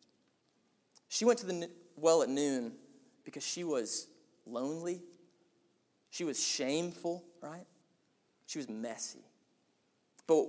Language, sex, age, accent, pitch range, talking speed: English, male, 20-39, American, 140-190 Hz, 110 wpm